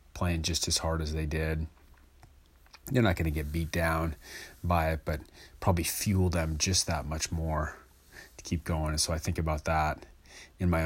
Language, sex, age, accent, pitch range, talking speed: English, male, 30-49, American, 75-85 Hz, 195 wpm